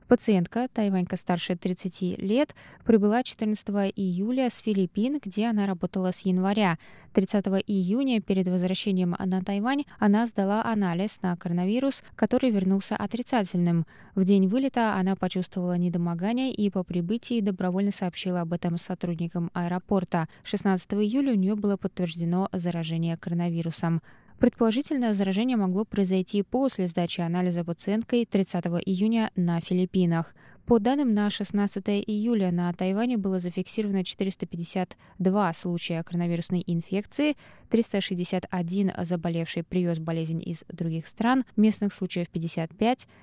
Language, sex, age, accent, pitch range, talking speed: Russian, female, 20-39, native, 175-210 Hz, 120 wpm